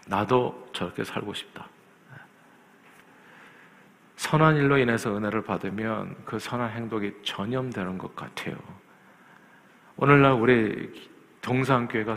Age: 50-69